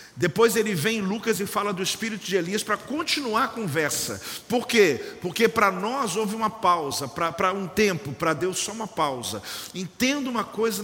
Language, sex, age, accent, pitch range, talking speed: Portuguese, male, 50-69, Brazilian, 180-220 Hz, 190 wpm